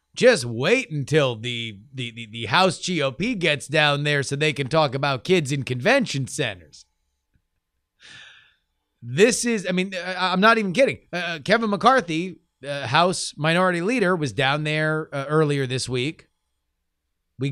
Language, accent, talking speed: English, American, 150 wpm